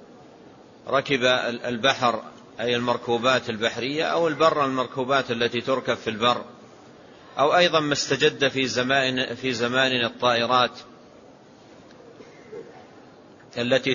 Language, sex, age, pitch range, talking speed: Arabic, male, 40-59, 125-140 Hz, 95 wpm